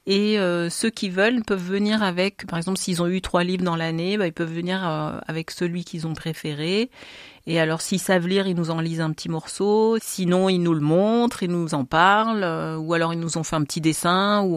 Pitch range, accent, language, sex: 160-205 Hz, French, French, female